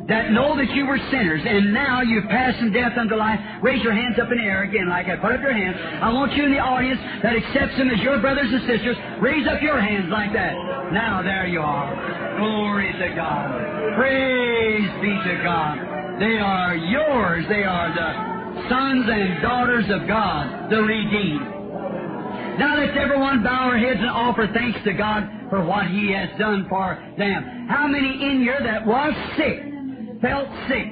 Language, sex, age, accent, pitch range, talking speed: English, male, 40-59, American, 205-255 Hz, 190 wpm